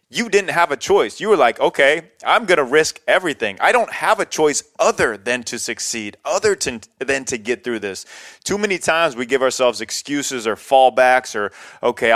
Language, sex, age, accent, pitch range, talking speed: English, male, 30-49, American, 115-155 Hz, 200 wpm